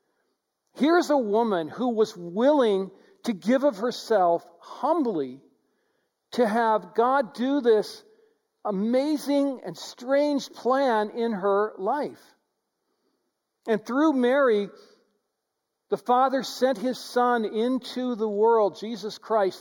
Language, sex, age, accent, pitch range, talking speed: English, male, 50-69, American, 195-265 Hz, 110 wpm